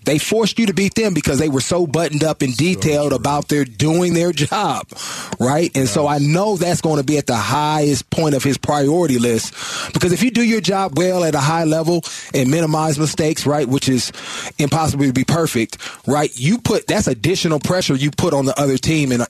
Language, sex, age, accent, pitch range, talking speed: English, male, 30-49, American, 135-165 Hz, 220 wpm